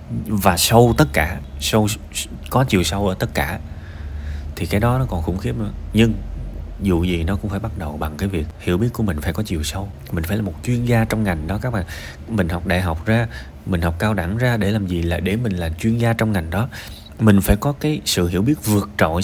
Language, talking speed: Vietnamese, 250 wpm